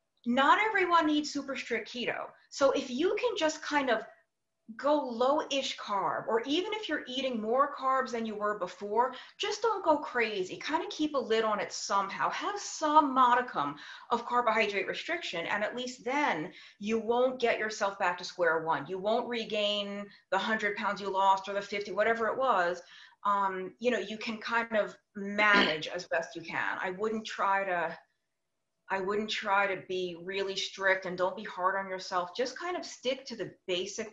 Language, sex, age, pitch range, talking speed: English, female, 30-49, 200-275 Hz, 190 wpm